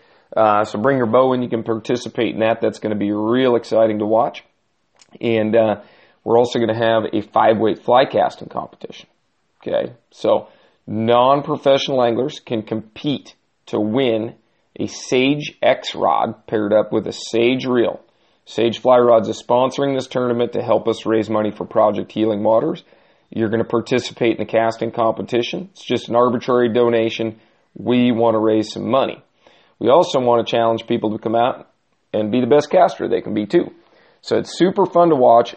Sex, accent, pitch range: male, American, 110-125 Hz